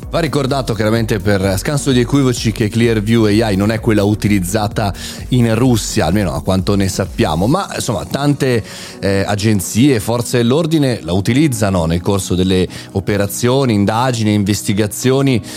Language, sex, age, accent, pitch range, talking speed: Italian, male, 30-49, native, 95-125 Hz, 140 wpm